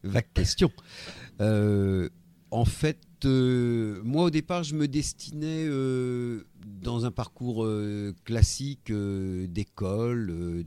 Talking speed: 120 wpm